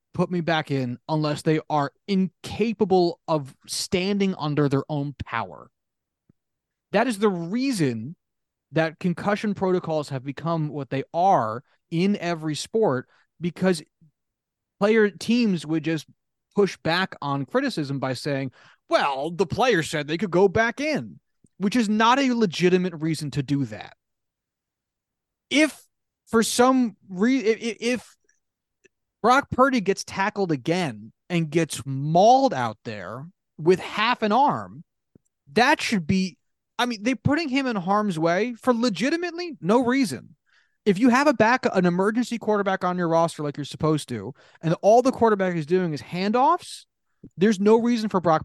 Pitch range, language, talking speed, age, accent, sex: 150-220 Hz, English, 150 wpm, 30-49, American, male